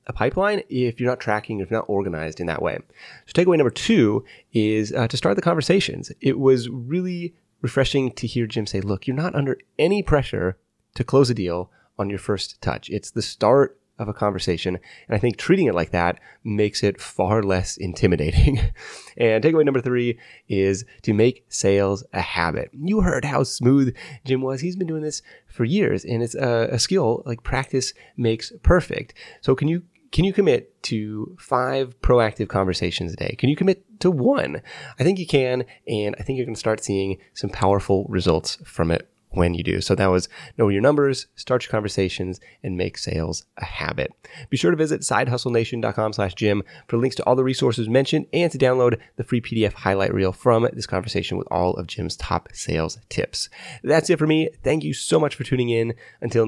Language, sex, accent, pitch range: English, male, American, 100-135 Hz